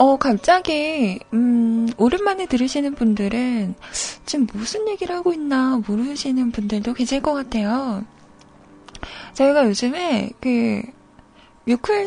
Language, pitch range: Korean, 225-300 Hz